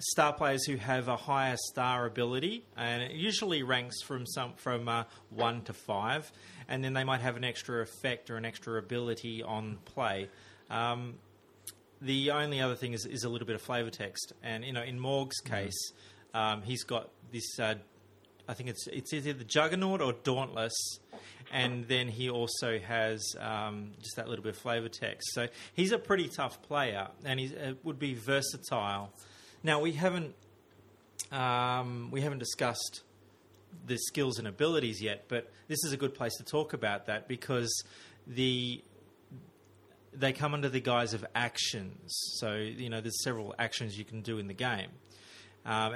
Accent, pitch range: Australian, 110-130 Hz